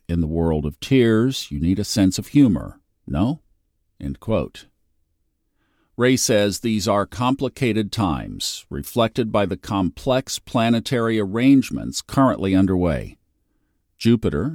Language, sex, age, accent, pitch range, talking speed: English, male, 50-69, American, 90-120 Hz, 120 wpm